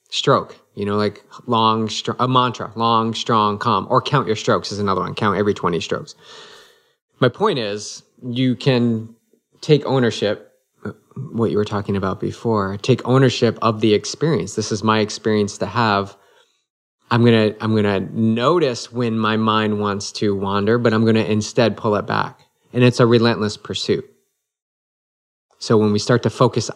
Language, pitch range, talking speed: English, 105-125 Hz, 165 wpm